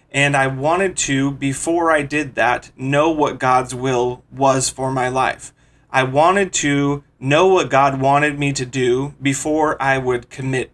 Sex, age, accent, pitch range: male, 30-49, American, 130-150 Hz